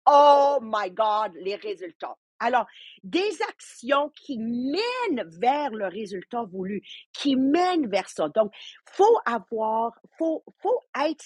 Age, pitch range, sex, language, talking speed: 50-69, 200-285 Hz, female, English, 135 wpm